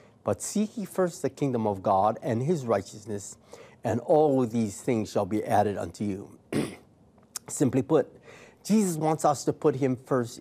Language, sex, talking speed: English, male, 165 wpm